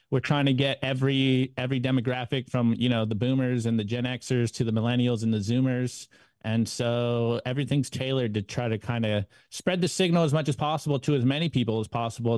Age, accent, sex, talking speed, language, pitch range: 30-49, American, male, 215 wpm, English, 120-150 Hz